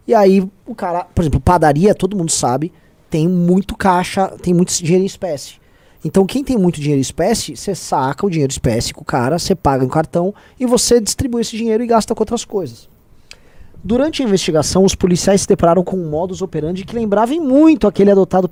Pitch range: 160-210 Hz